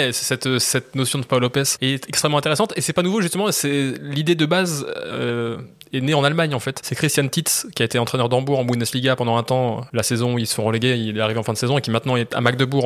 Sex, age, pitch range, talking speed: male, 20-39, 120-145 Hz, 270 wpm